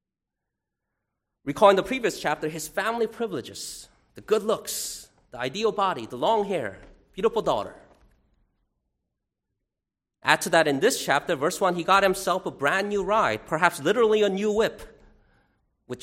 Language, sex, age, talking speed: English, male, 30-49, 150 wpm